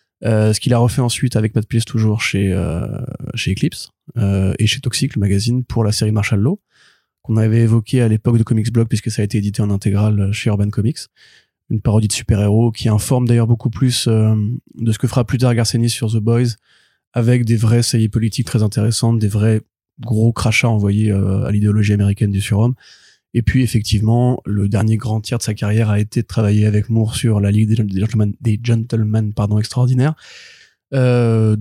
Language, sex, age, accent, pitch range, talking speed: French, male, 20-39, French, 105-120 Hz, 205 wpm